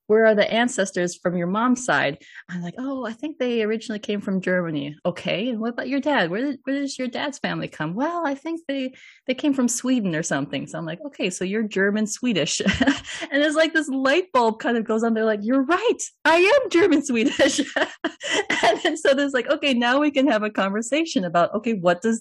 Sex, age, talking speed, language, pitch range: female, 20-39, 225 wpm, English, 180-255 Hz